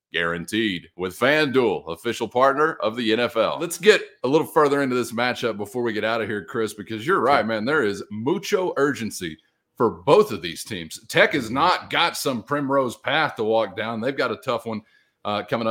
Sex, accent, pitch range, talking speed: male, American, 110-140 Hz, 205 wpm